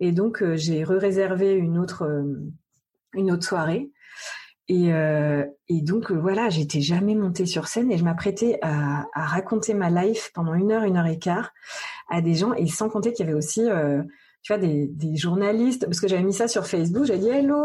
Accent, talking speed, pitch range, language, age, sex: French, 215 wpm, 165-210 Hz, French, 30-49, female